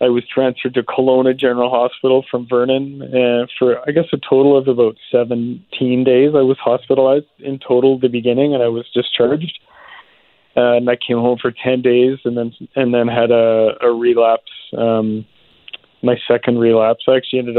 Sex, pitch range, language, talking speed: male, 115-130 Hz, English, 180 wpm